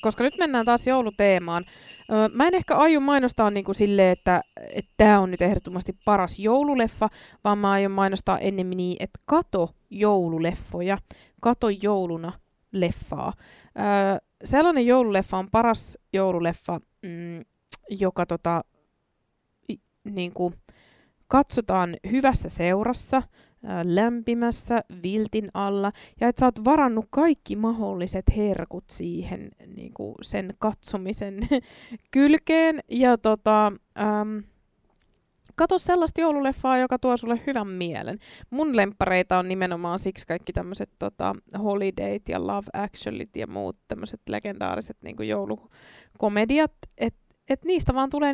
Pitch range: 185-245 Hz